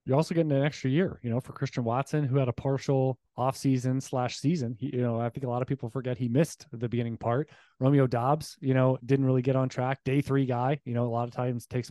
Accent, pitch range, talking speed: American, 125-150 Hz, 265 wpm